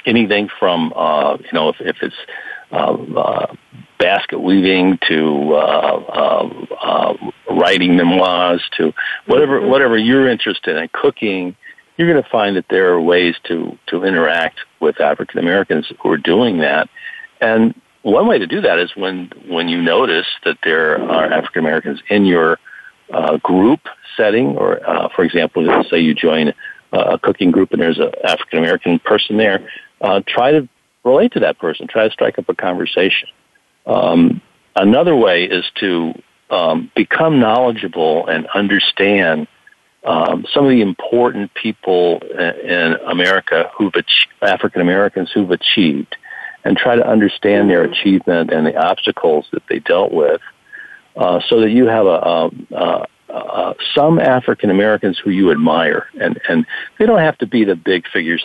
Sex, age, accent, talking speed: male, 50-69, American, 155 wpm